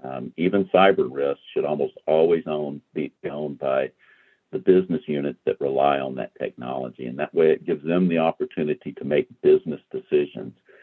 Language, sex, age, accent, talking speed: English, male, 60-79, American, 170 wpm